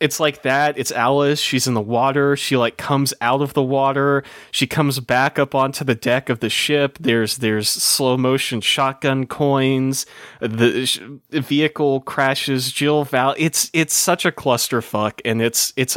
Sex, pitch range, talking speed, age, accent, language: male, 115-140 Hz, 170 wpm, 30-49, American, English